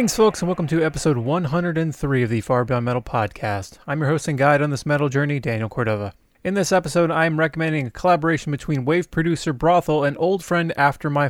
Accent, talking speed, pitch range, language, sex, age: American, 220 wpm, 135-170 Hz, English, male, 20-39